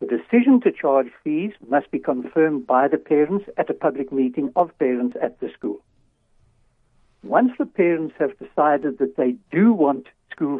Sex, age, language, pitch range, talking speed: male, 60-79, English, 130-180 Hz, 170 wpm